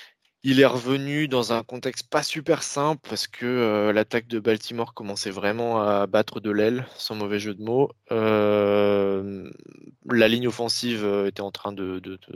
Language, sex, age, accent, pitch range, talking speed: French, male, 20-39, French, 100-115 Hz, 175 wpm